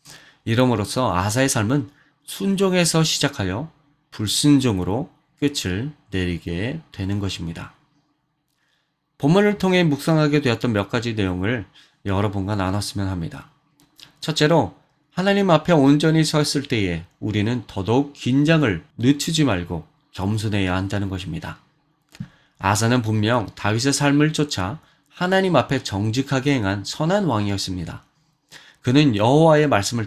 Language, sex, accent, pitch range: Korean, male, native, 105-150 Hz